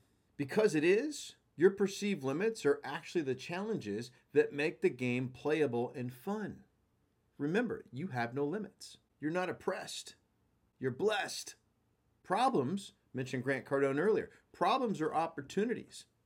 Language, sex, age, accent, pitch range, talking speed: English, male, 40-59, American, 120-185 Hz, 130 wpm